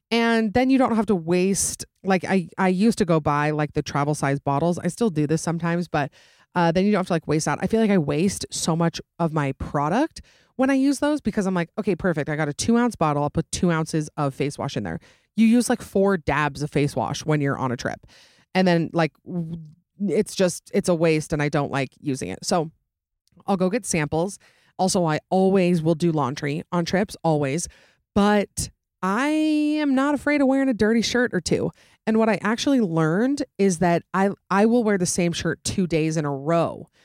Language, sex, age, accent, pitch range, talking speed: English, female, 30-49, American, 155-200 Hz, 225 wpm